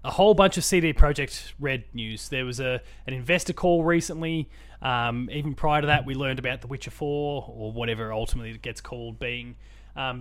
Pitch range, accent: 115-150 Hz, Australian